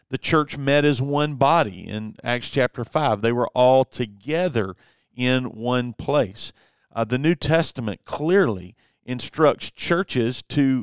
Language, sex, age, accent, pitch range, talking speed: English, male, 40-59, American, 115-145 Hz, 140 wpm